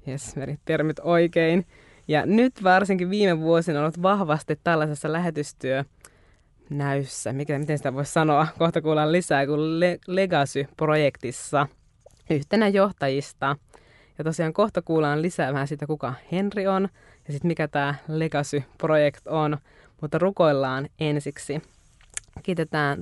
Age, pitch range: 20-39, 145-165 Hz